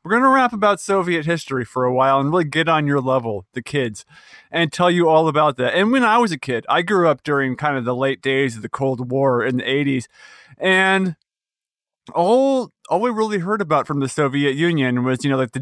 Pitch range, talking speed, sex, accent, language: 135-170 Hz, 240 wpm, male, American, English